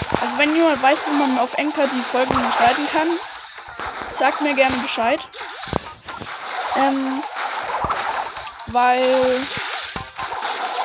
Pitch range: 260-300 Hz